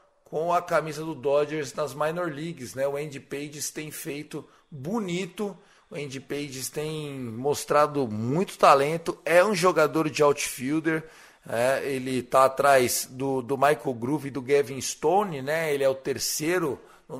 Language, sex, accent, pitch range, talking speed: Portuguese, male, Brazilian, 140-175 Hz, 155 wpm